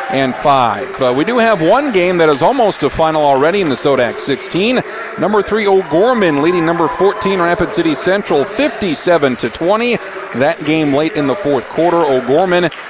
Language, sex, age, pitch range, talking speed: English, male, 40-59, 145-185 Hz, 175 wpm